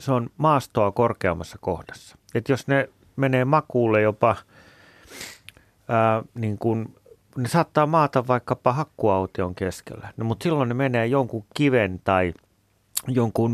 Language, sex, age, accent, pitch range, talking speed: Finnish, male, 30-49, native, 95-115 Hz, 130 wpm